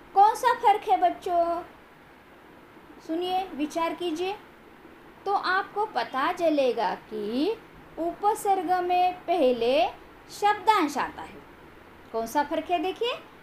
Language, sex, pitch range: Marathi, female, 290-395 Hz